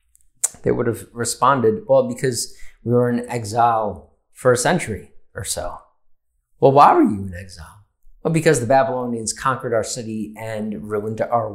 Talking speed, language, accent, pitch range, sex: 160 wpm, English, American, 95-120 Hz, male